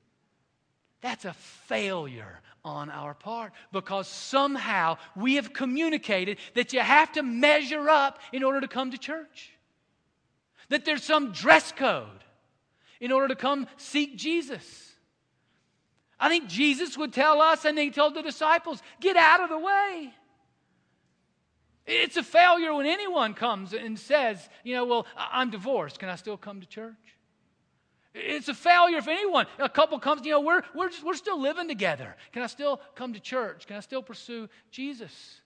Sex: male